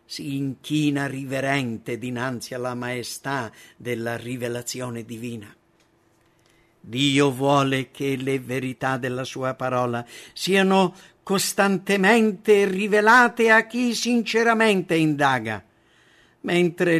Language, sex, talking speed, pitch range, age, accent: English, male, 90 wpm, 135-195 Hz, 50-69, Italian